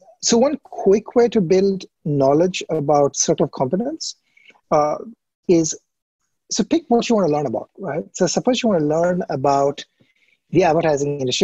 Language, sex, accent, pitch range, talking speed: English, male, Indian, 140-185 Hz, 170 wpm